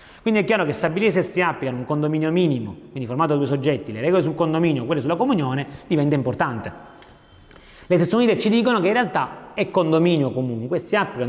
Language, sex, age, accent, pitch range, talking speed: Italian, male, 30-49, native, 130-190 Hz, 205 wpm